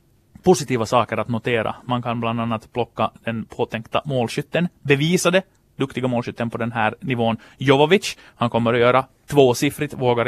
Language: Swedish